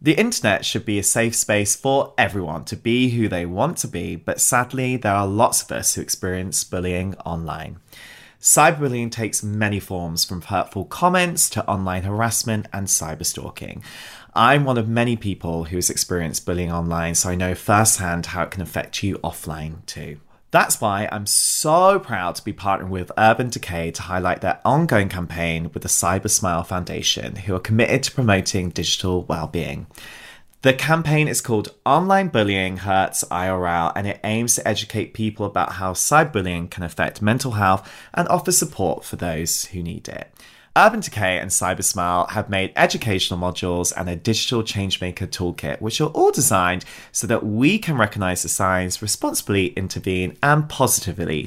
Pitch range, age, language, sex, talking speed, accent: 90-115 Hz, 20-39, English, male, 170 wpm, British